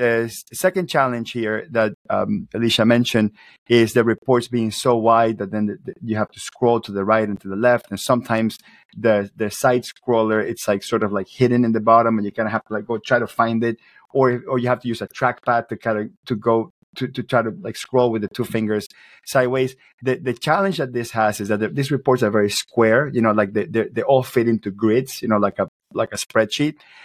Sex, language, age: male, English, 30-49